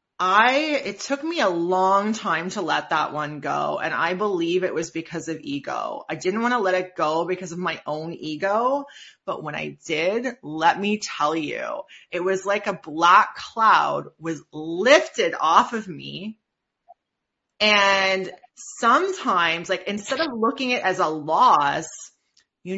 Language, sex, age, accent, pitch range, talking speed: English, female, 30-49, American, 170-225 Hz, 165 wpm